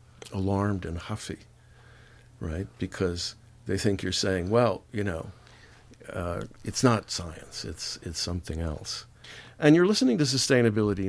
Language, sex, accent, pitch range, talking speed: English, male, American, 100-135 Hz, 135 wpm